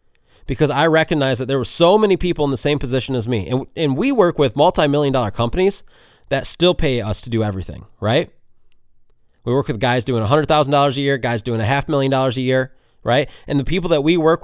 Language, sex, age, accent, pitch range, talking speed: English, male, 20-39, American, 125-160 Hz, 225 wpm